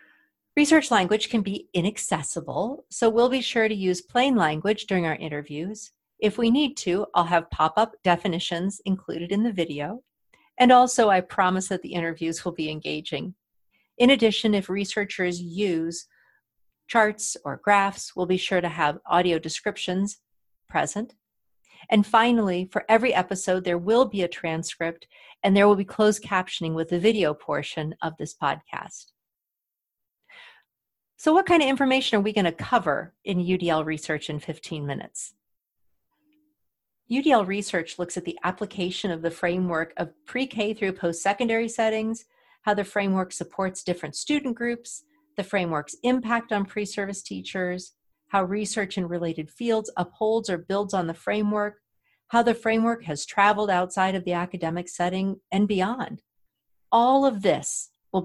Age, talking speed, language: 40-59, 150 wpm, English